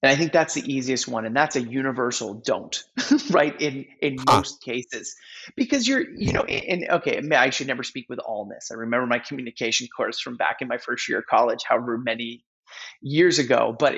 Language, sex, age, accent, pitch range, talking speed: English, male, 30-49, American, 120-155 Hz, 200 wpm